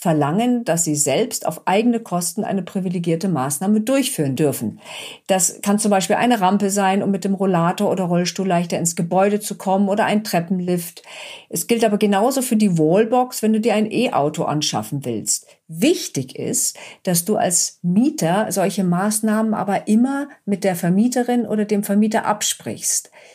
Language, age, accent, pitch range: German, 50-69, German, 170-220 Hz